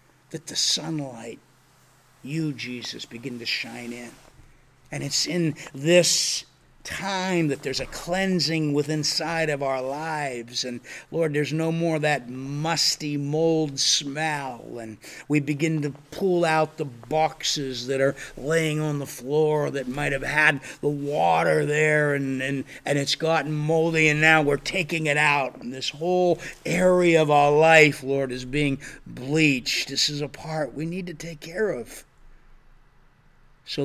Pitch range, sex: 135-170 Hz, male